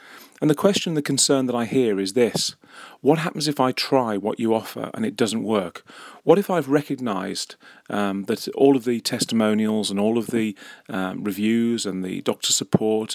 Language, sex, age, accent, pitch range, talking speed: English, male, 40-59, British, 110-140 Hz, 185 wpm